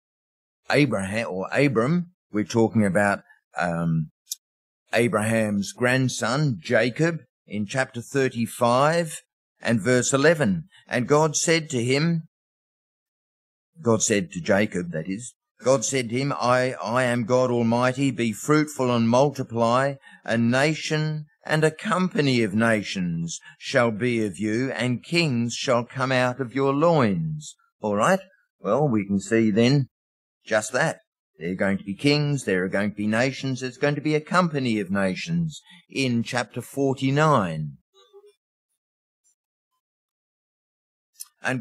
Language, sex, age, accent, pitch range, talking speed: English, male, 50-69, Australian, 115-150 Hz, 135 wpm